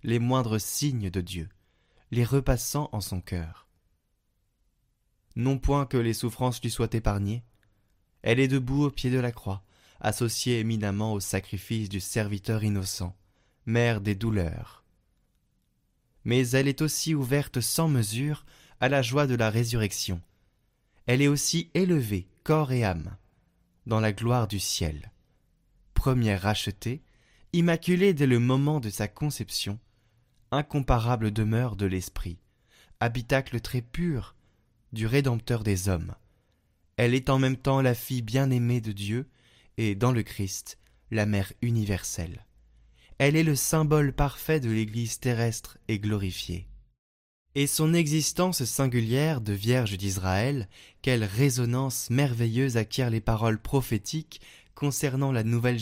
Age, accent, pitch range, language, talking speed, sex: 20-39, French, 100-135 Hz, French, 135 wpm, male